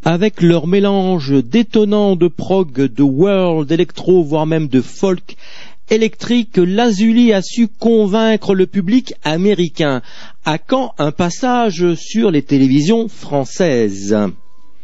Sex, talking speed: male, 115 wpm